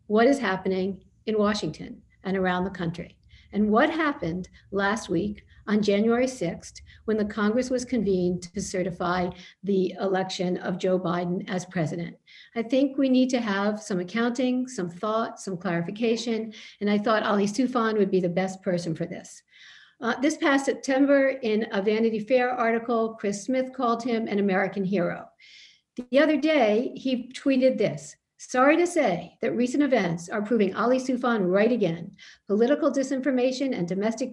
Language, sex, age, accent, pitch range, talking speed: English, female, 50-69, American, 190-245 Hz, 165 wpm